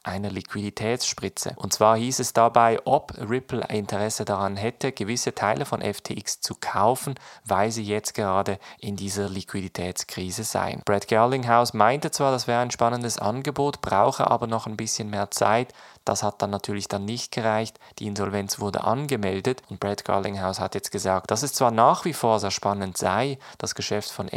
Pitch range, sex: 100-120 Hz, male